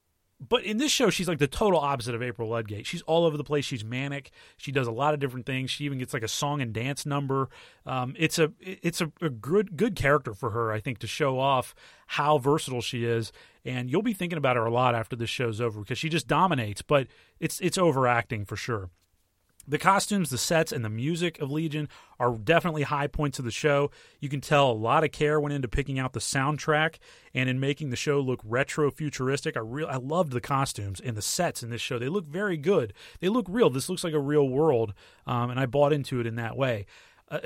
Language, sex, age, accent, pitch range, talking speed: English, male, 30-49, American, 120-160 Hz, 235 wpm